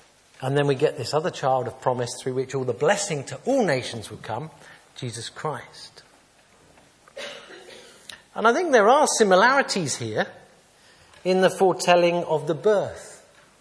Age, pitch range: 50-69, 125-185 Hz